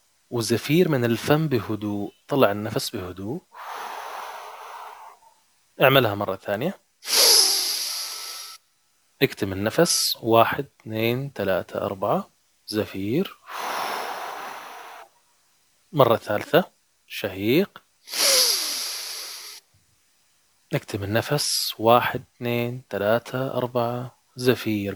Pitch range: 115-160 Hz